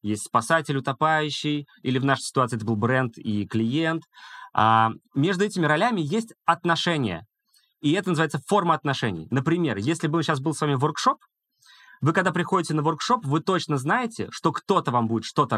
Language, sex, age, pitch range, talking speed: Russian, male, 20-39, 125-170 Hz, 165 wpm